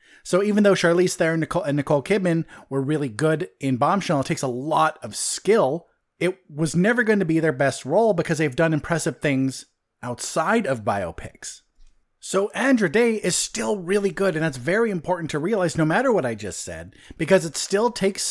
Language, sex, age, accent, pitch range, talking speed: English, male, 30-49, American, 145-200 Hz, 195 wpm